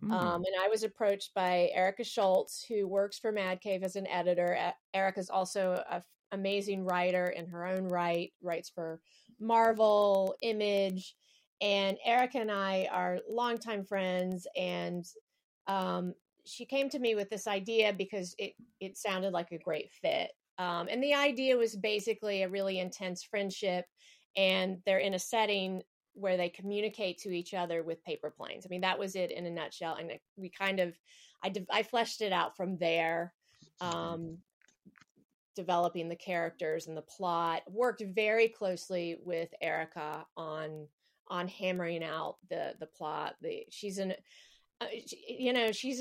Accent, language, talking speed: American, English, 160 wpm